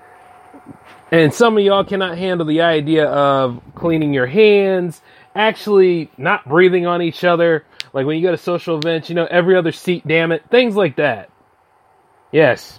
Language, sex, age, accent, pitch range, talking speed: English, male, 30-49, American, 135-190 Hz, 170 wpm